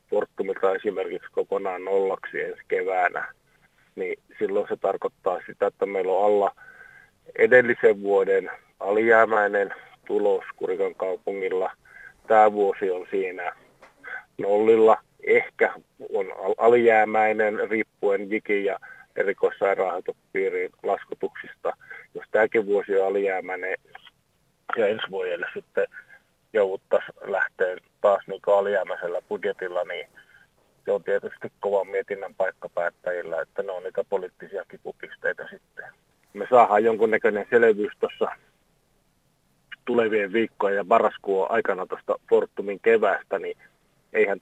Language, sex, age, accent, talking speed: Finnish, male, 30-49, native, 105 wpm